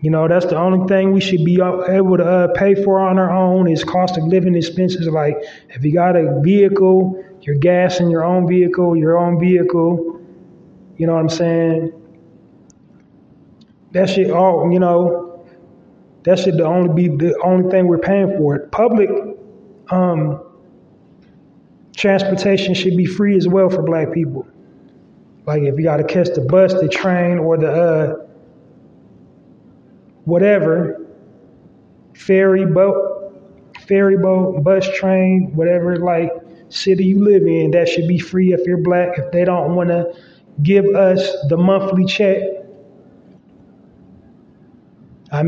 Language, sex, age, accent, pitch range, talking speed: English, male, 20-39, American, 170-190 Hz, 150 wpm